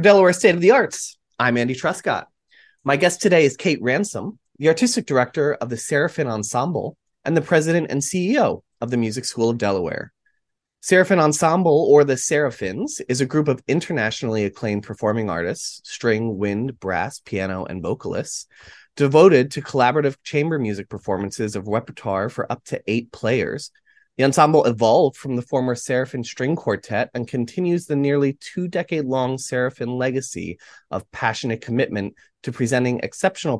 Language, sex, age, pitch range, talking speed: English, male, 30-49, 110-155 Hz, 155 wpm